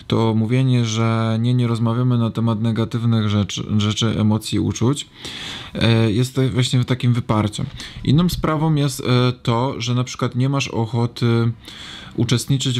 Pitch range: 110-125 Hz